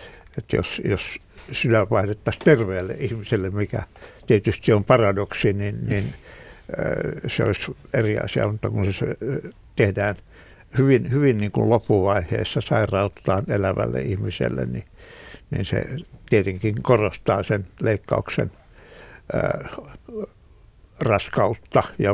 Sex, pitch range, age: male, 100-120 Hz, 60-79